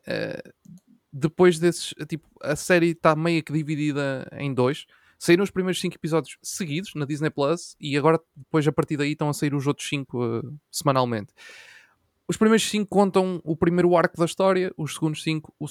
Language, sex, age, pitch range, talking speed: Portuguese, male, 20-39, 140-180 Hz, 170 wpm